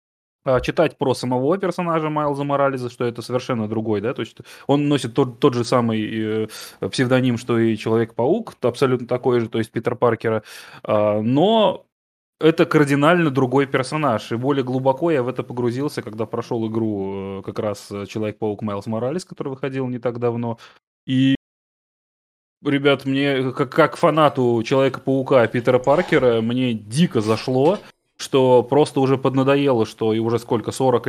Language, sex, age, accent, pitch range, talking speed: Russian, male, 20-39, native, 115-140 Hz, 145 wpm